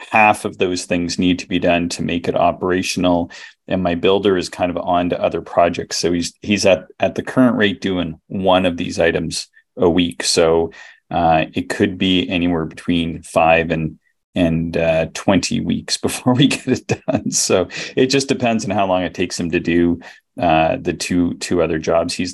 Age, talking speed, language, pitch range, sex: 30-49, 200 wpm, English, 80-95 Hz, male